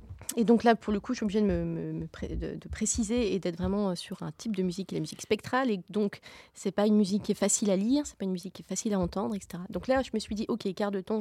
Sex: female